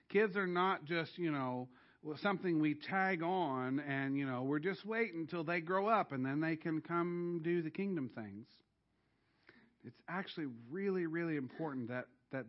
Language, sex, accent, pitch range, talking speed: English, male, American, 125-170 Hz, 175 wpm